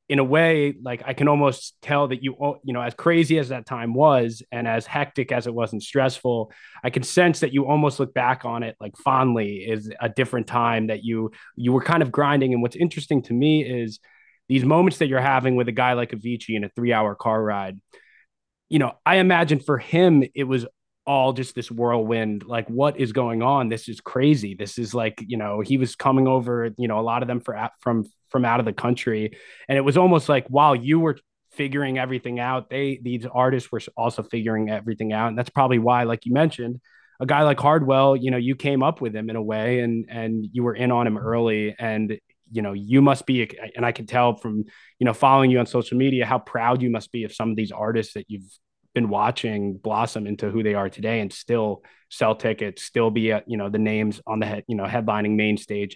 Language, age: English, 20-39